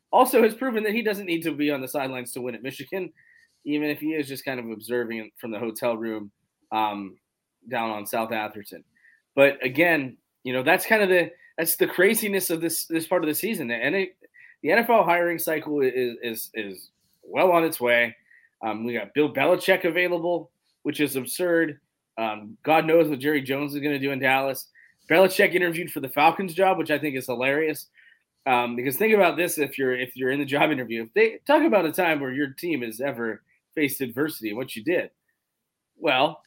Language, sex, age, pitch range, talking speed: English, male, 20-39, 125-180 Hz, 205 wpm